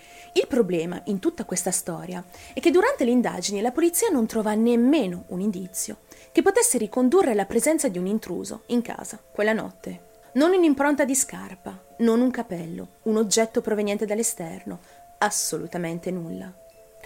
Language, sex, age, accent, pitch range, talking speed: Italian, female, 30-49, native, 180-245 Hz, 150 wpm